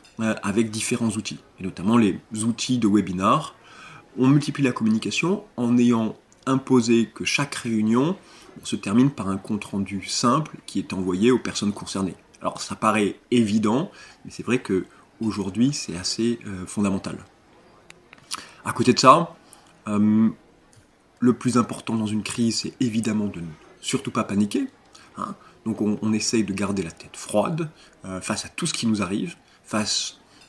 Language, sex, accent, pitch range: French, male, French, 100-125 Hz